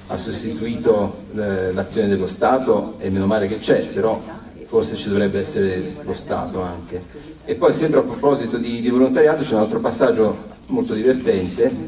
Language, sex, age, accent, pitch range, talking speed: Italian, male, 40-59, native, 100-140 Hz, 160 wpm